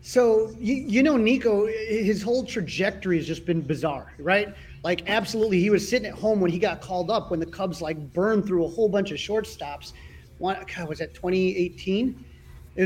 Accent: American